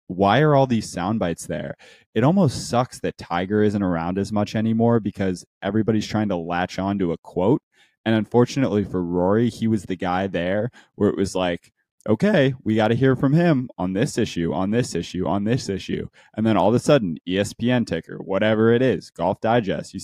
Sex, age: male, 20-39